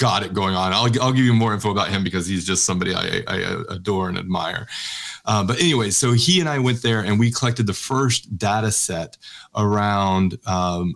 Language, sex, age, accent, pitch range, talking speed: English, male, 30-49, American, 95-120 Hz, 215 wpm